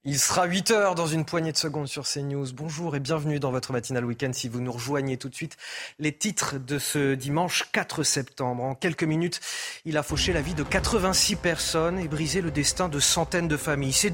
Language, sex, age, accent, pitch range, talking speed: French, male, 30-49, French, 135-175 Hz, 215 wpm